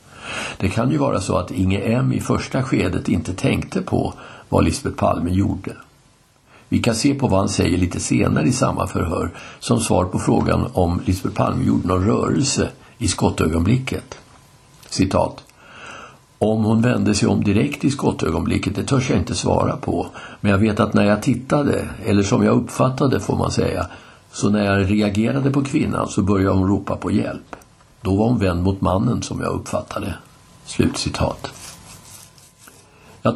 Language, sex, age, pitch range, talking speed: Swedish, male, 60-79, 95-115 Hz, 170 wpm